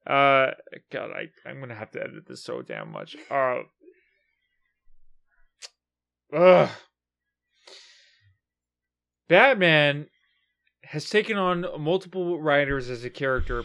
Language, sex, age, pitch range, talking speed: English, male, 30-49, 140-200 Hz, 100 wpm